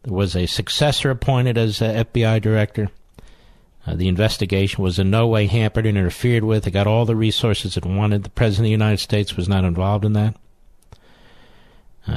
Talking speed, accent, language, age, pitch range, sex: 185 wpm, American, English, 50-69, 100-130 Hz, male